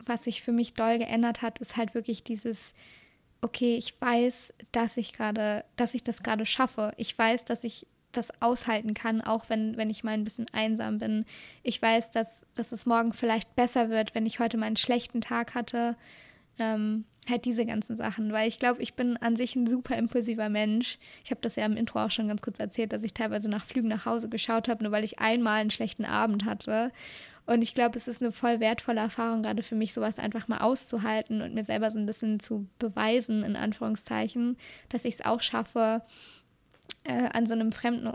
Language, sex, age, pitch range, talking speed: German, female, 20-39, 220-235 Hz, 210 wpm